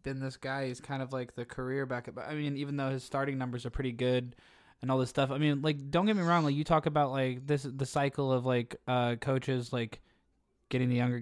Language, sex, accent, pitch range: English, male, American, 120-140 Hz